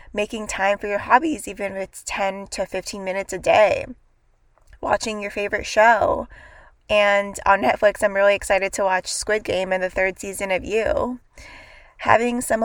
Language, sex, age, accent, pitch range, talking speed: English, female, 20-39, American, 200-245 Hz, 170 wpm